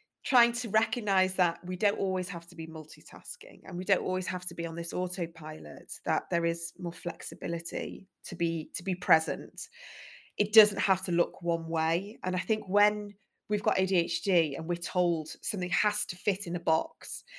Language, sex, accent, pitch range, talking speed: English, female, British, 170-205 Hz, 190 wpm